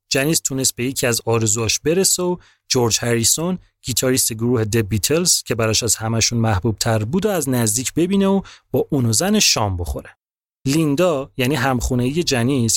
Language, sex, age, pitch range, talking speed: Persian, male, 30-49, 115-160 Hz, 165 wpm